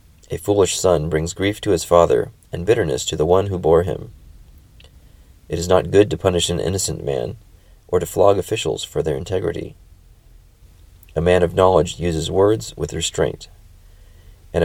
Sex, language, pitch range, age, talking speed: male, English, 85-95 Hz, 30-49, 170 wpm